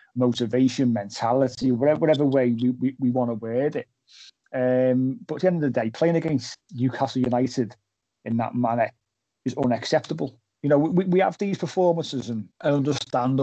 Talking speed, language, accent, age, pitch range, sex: 175 wpm, English, British, 30-49, 120-145 Hz, male